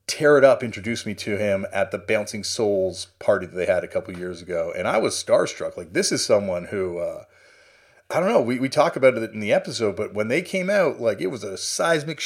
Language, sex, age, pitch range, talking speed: English, male, 30-49, 105-165 Hz, 245 wpm